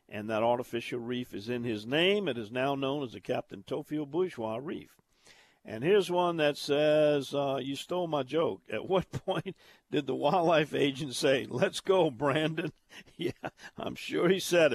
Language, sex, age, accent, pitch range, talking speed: English, male, 50-69, American, 135-185 Hz, 180 wpm